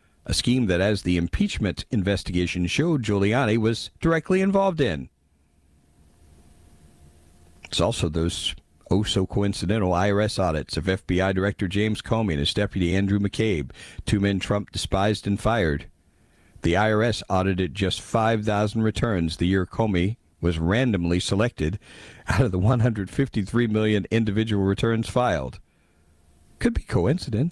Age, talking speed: 50-69, 125 wpm